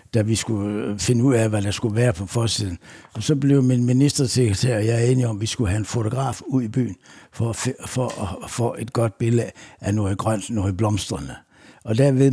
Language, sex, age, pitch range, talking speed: Danish, male, 60-79, 100-125 Hz, 230 wpm